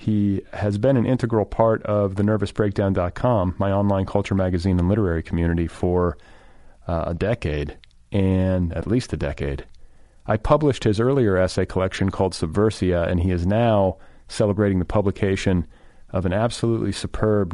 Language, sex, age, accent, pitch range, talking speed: English, male, 40-59, American, 85-105 Hz, 150 wpm